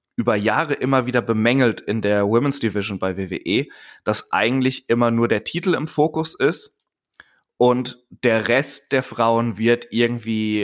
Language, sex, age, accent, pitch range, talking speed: German, male, 20-39, German, 110-130 Hz, 150 wpm